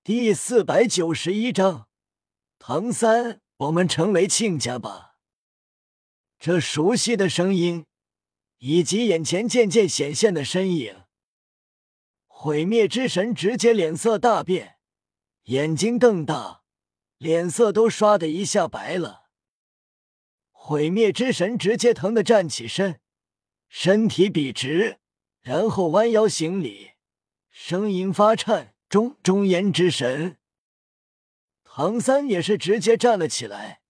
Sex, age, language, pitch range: male, 50-69, Chinese, 155-220 Hz